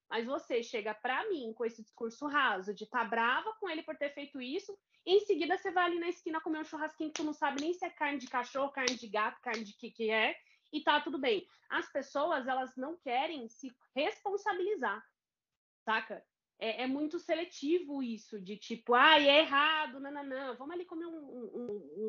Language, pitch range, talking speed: Portuguese, 230-320 Hz, 210 wpm